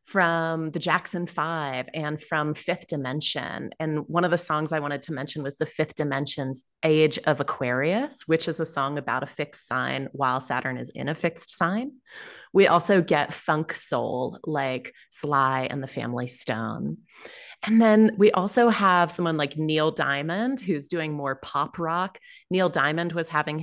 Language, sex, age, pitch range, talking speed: English, female, 30-49, 140-175 Hz, 175 wpm